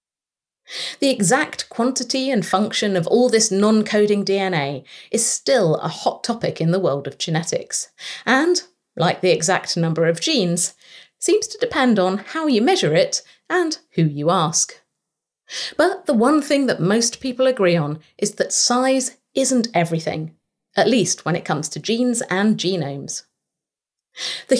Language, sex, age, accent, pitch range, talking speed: English, female, 30-49, British, 170-260 Hz, 155 wpm